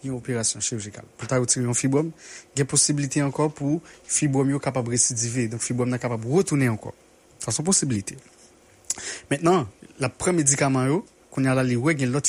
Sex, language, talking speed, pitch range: male, English, 150 wpm, 125-155 Hz